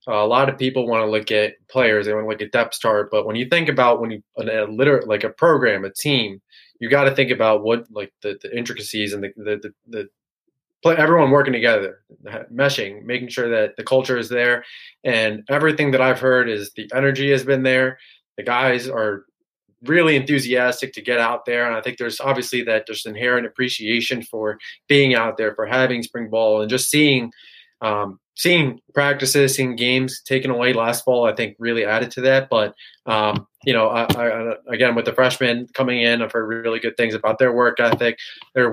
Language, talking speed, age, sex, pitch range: English, 210 wpm, 20-39, male, 110-130 Hz